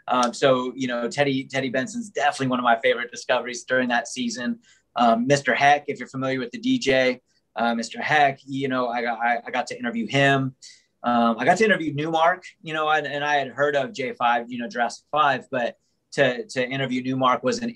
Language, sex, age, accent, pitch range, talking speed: English, male, 20-39, American, 115-140 Hz, 215 wpm